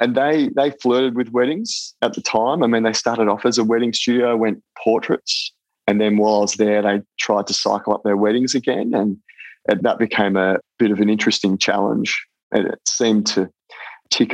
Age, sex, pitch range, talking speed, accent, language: 20-39, male, 100-115 Hz, 200 wpm, Australian, English